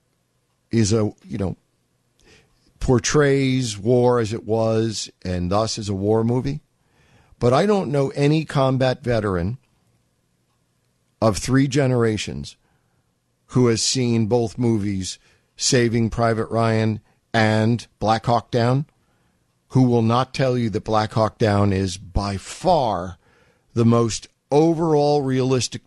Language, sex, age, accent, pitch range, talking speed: English, male, 50-69, American, 105-130 Hz, 125 wpm